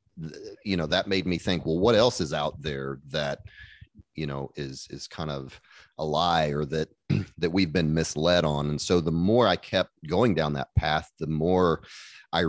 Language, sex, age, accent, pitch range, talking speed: English, male, 30-49, American, 75-90 Hz, 195 wpm